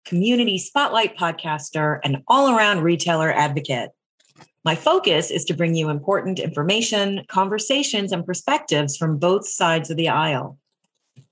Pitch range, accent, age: 155-220 Hz, American, 30-49